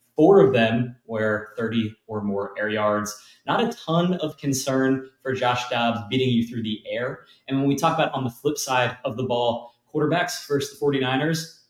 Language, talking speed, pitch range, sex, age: English, 195 wpm, 110-135 Hz, male, 20-39